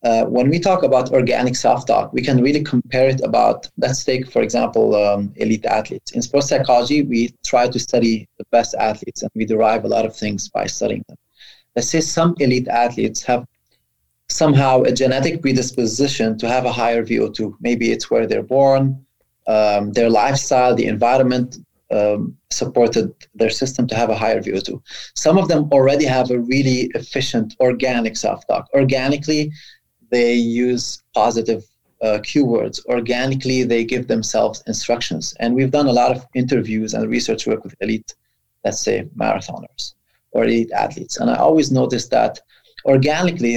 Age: 20-39